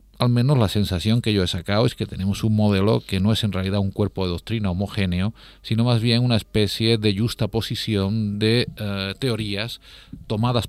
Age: 50-69